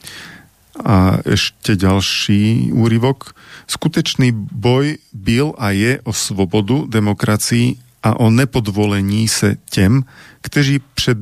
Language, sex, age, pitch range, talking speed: Slovak, male, 40-59, 100-120 Hz, 100 wpm